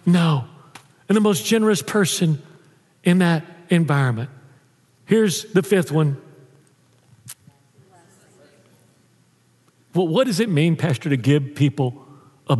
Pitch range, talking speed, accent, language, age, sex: 145-205 Hz, 110 wpm, American, English, 50-69, male